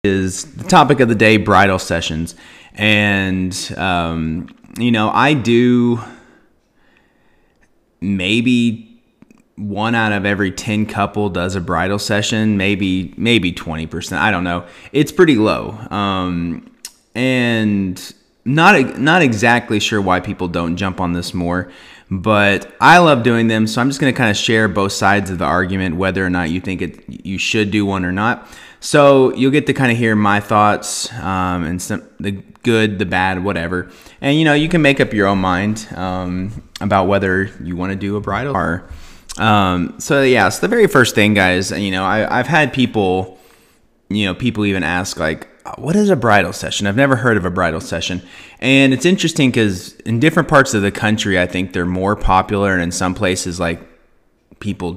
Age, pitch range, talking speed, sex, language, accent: 30-49, 90-115 Hz, 180 wpm, male, English, American